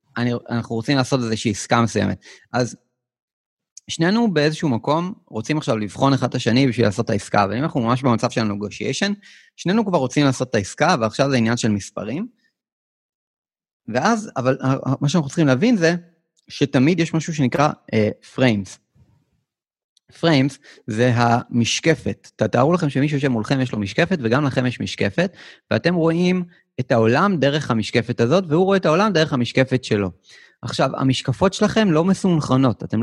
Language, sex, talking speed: Hebrew, male, 155 wpm